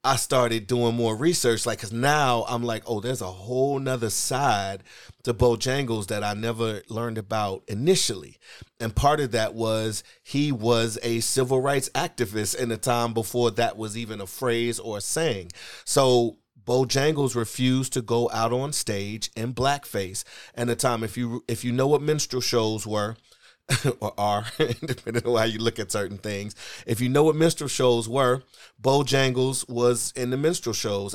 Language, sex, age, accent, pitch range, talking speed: English, male, 30-49, American, 110-130 Hz, 175 wpm